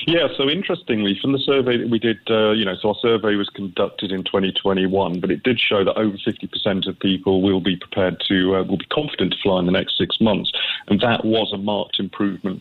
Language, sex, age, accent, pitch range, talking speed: English, male, 40-59, British, 95-105 Hz, 250 wpm